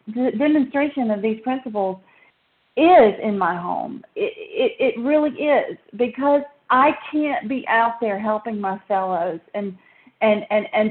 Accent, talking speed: American, 150 wpm